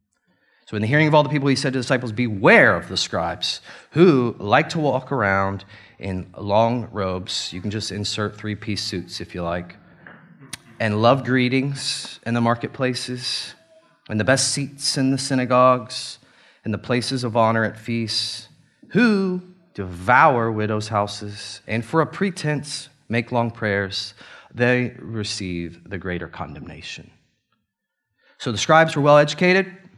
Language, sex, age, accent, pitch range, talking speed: English, male, 30-49, American, 110-140 Hz, 150 wpm